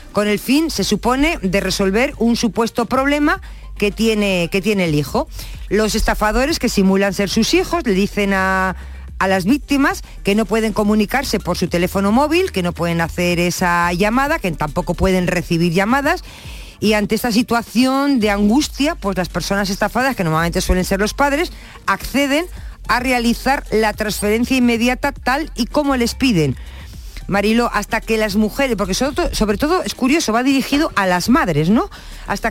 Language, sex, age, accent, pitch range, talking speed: Spanish, female, 50-69, Spanish, 195-265 Hz, 170 wpm